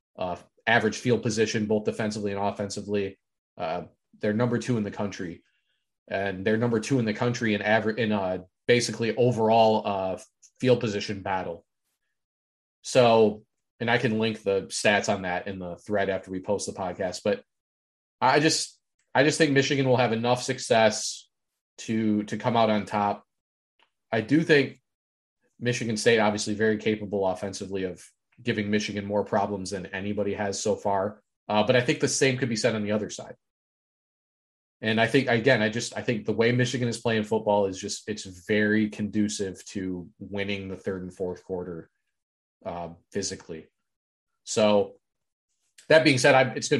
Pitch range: 100-115 Hz